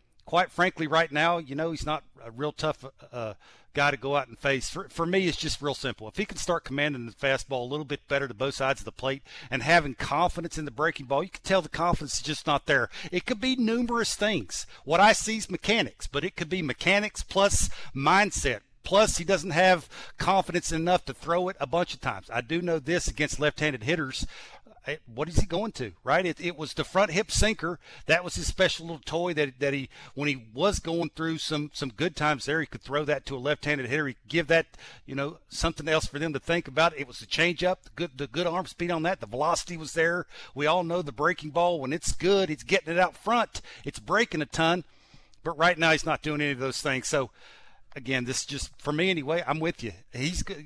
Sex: male